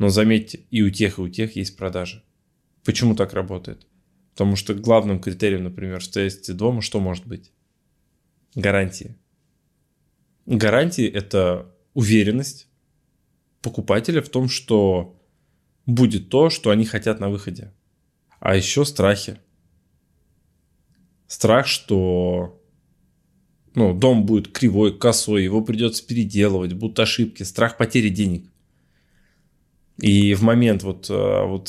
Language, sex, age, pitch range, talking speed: Russian, male, 20-39, 95-115 Hz, 115 wpm